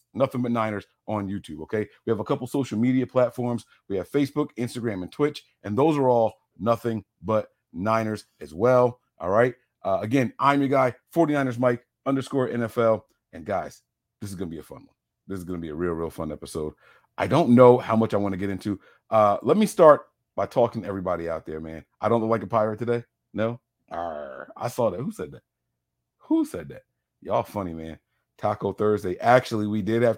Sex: male